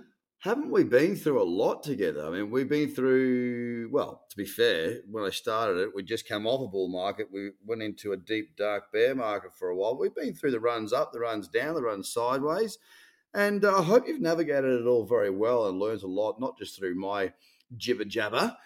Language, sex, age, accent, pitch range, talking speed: English, male, 30-49, Australian, 105-140 Hz, 220 wpm